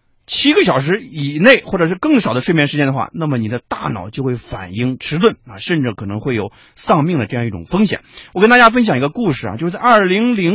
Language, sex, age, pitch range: Chinese, male, 30-49, 120-190 Hz